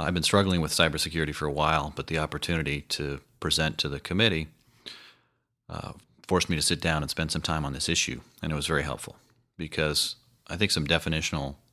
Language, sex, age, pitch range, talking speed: English, male, 30-49, 75-90 Hz, 200 wpm